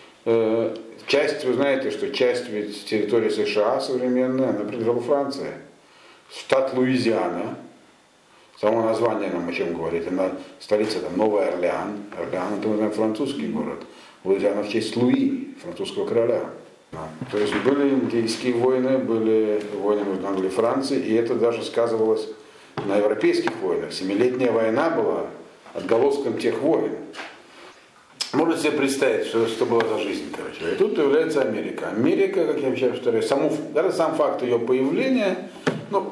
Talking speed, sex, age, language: 140 wpm, male, 50-69, Russian